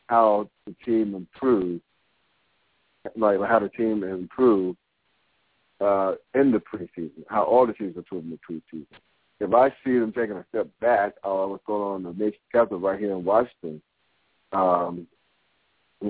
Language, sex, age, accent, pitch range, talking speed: English, male, 60-79, American, 95-120 Hz, 165 wpm